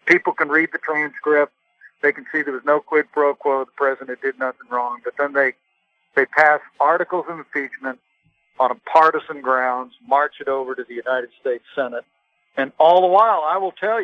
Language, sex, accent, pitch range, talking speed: English, male, American, 135-165 Hz, 195 wpm